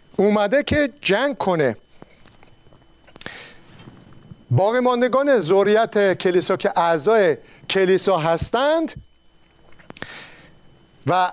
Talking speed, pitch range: 65 wpm, 170-225 Hz